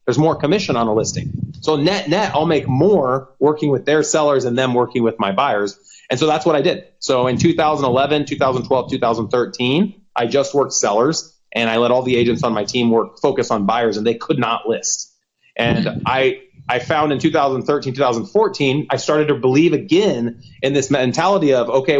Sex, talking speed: male, 195 wpm